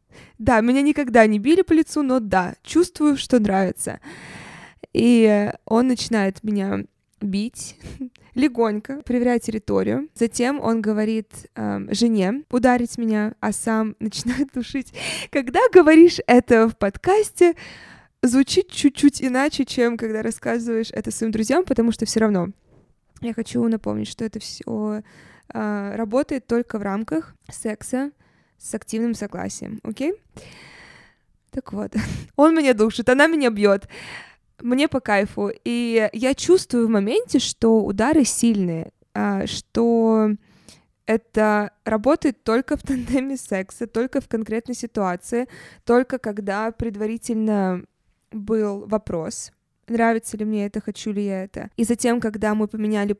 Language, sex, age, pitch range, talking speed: Russian, female, 20-39, 215-260 Hz, 125 wpm